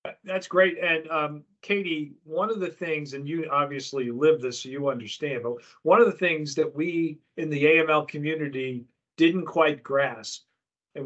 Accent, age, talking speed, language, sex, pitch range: American, 50-69, 175 wpm, English, male, 140-165 Hz